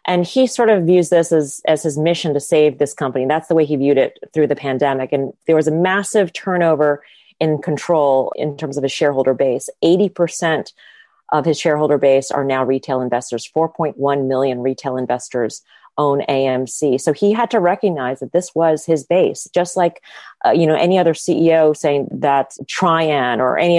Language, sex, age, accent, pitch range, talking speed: English, female, 30-49, American, 145-175 Hz, 190 wpm